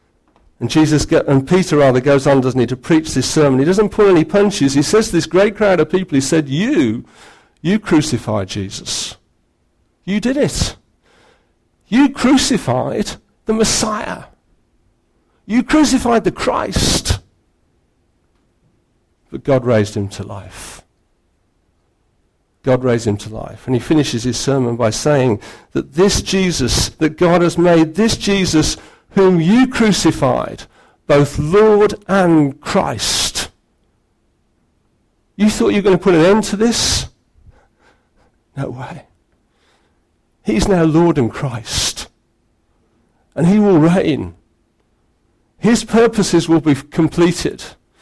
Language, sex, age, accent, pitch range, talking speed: English, male, 50-69, British, 115-190 Hz, 130 wpm